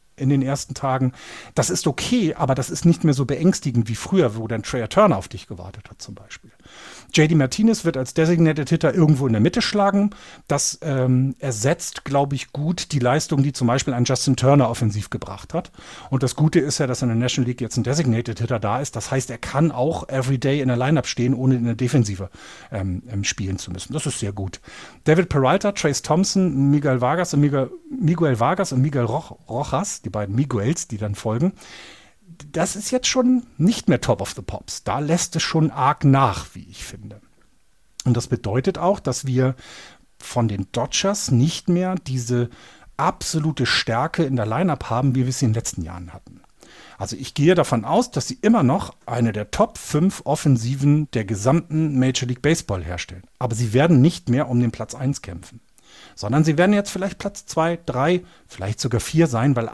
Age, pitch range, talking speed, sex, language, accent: 40-59, 115-160 Hz, 200 wpm, male, German, German